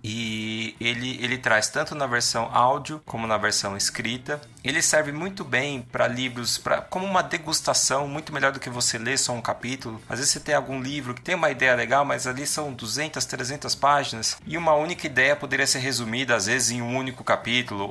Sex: male